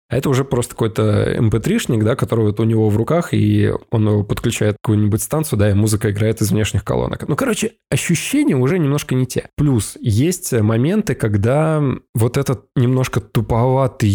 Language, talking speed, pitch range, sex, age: Russian, 180 wpm, 110-140 Hz, male, 20-39